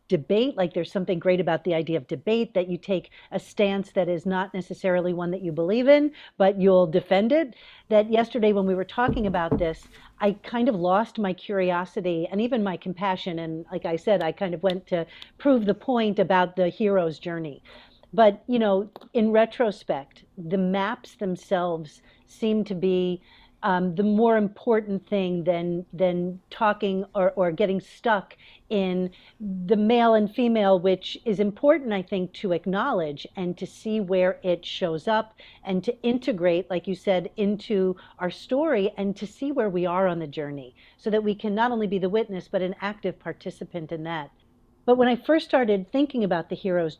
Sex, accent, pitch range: female, American, 180-215 Hz